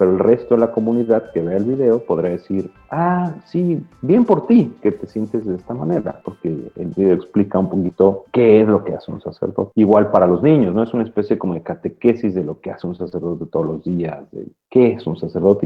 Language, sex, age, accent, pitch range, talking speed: Spanish, male, 40-59, Mexican, 90-115 Hz, 240 wpm